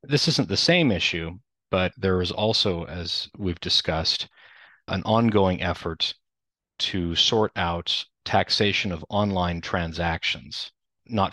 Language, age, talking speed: English, 30-49, 120 wpm